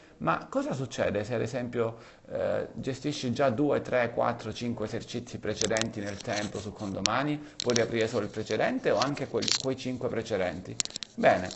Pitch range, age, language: 105-150 Hz, 40-59, Italian